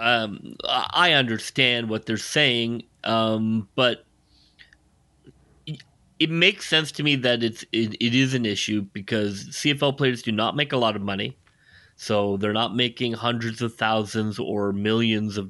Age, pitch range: 30-49, 100-120 Hz